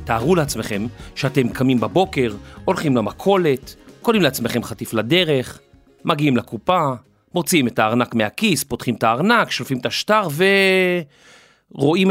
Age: 40-59